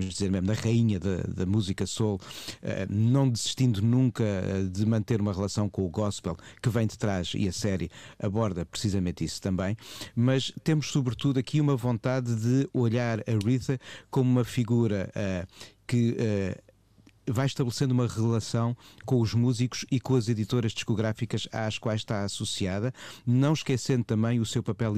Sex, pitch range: male, 95-120 Hz